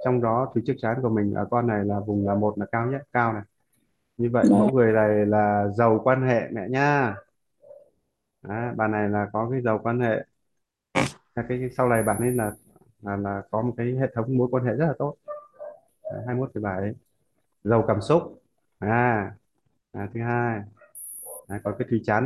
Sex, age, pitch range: male, 20-39, 105-125 Hz